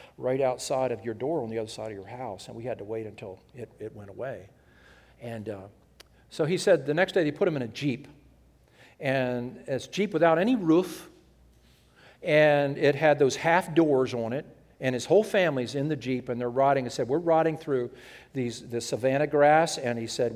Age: 50-69